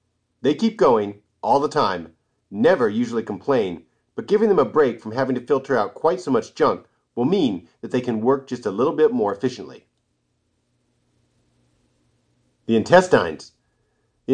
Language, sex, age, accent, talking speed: English, male, 40-59, American, 160 wpm